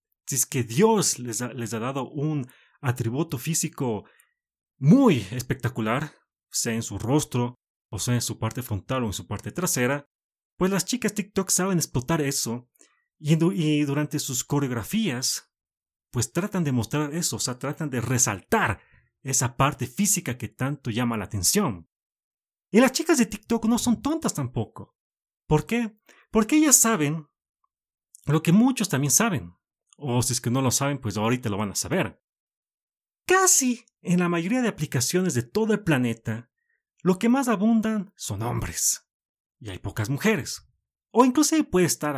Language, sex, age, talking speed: Spanish, male, 30-49, 165 wpm